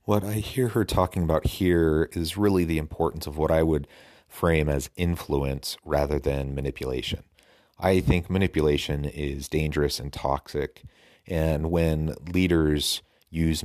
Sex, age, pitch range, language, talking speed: male, 30-49, 70-85 Hz, English, 140 wpm